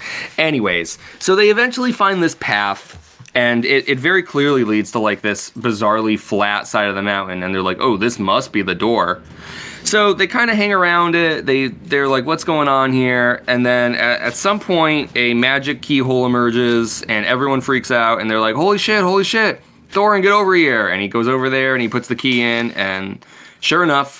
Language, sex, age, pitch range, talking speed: English, male, 20-39, 105-140 Hz, 210 wpm